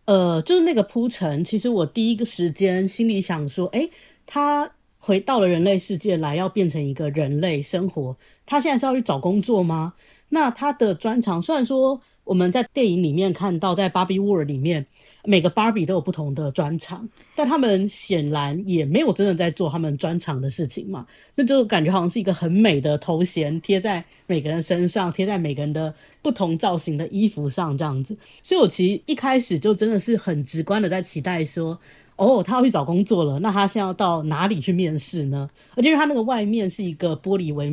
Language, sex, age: Chinese, female, 30-49